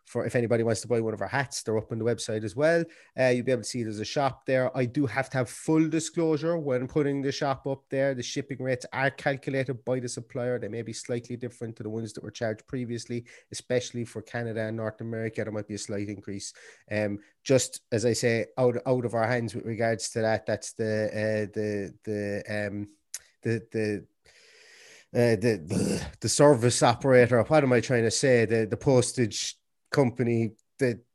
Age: 30-49